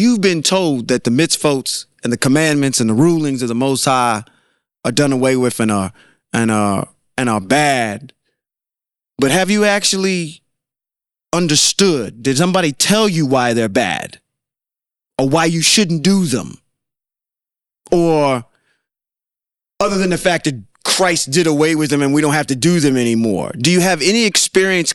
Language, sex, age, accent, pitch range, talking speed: English, male, 30-49, American, 145-185 Hz, 165 wpm